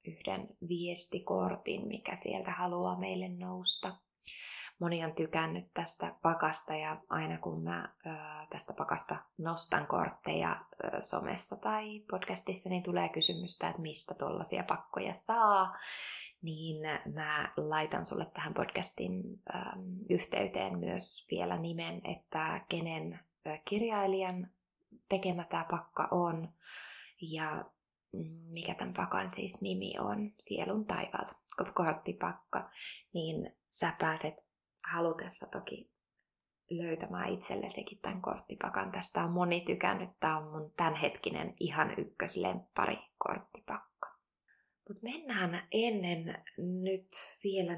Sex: female